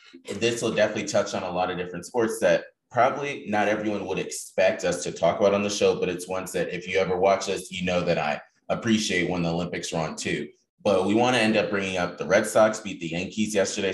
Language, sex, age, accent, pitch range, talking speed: English, male, 20-39, American, 85-100 Hz, 245 wpm